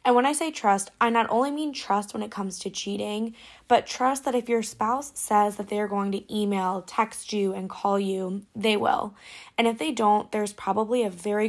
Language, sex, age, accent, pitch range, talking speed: English, female, 10-29, American, 195-230 Hz, 225 wpm